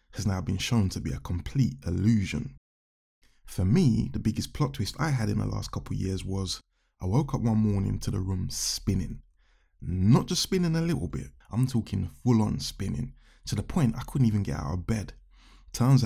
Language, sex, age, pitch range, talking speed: English, male, 20-39, 95-115 Hz, 200 wpm